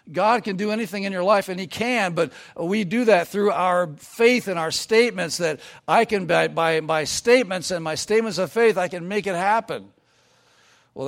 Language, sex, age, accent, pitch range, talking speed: English, male, 60-79, American, 145-185 Hz, 205 wpm